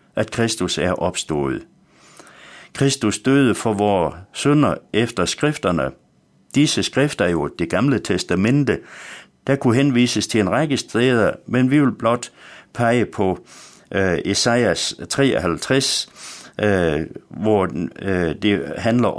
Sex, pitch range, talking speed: male, 100-135 Hz, 120 wpm